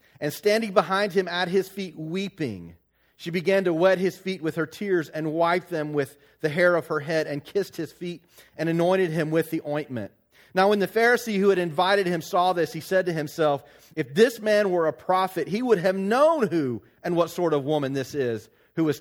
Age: 40-59